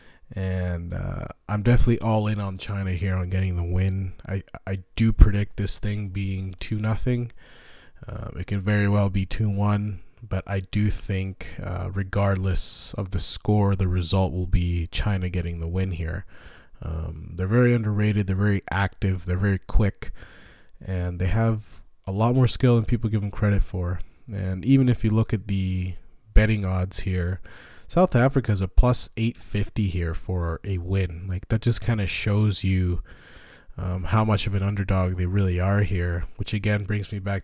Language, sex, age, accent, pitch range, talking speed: English, male, 20-39, American, 90-110 Hz, 180 wpm